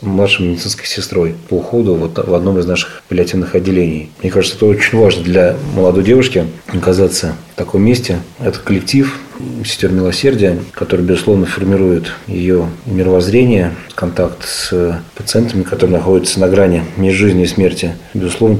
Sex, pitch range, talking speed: male, 90-105 Hz, 140 wpm